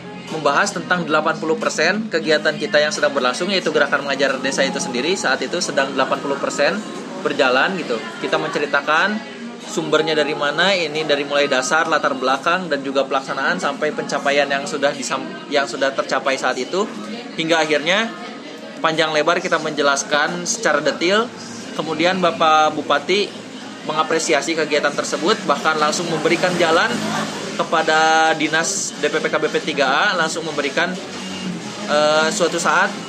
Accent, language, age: native, Indonesian, 20-39